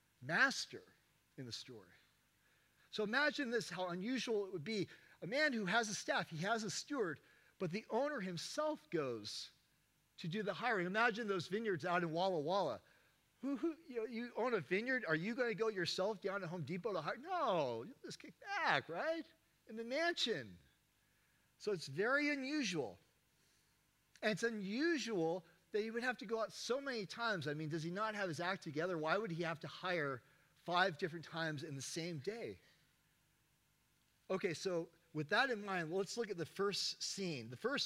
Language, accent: English, American